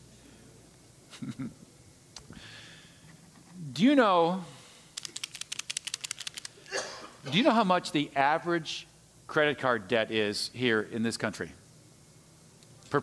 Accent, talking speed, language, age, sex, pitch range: American, 90 wpm, English, 50-69, male, 145-230 Hz